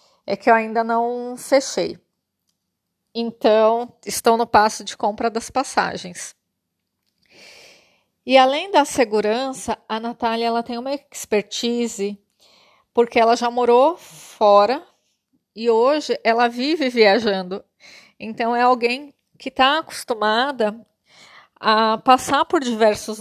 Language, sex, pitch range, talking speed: Portuguese, female, 220-285 Hz, 115 wpm